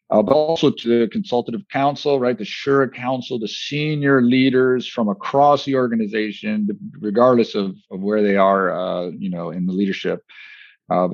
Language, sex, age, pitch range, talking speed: English, male, 40-59, 100-140 Hz, 165 wpm